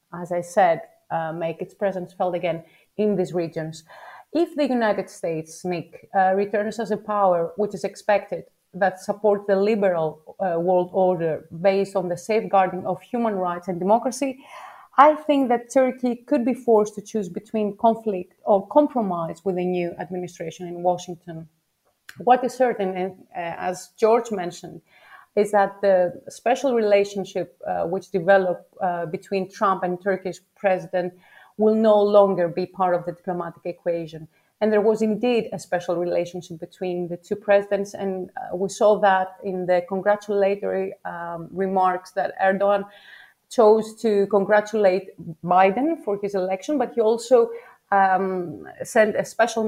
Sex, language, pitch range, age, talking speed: female, English, 180-210 Hz, 30-49, 150 wpm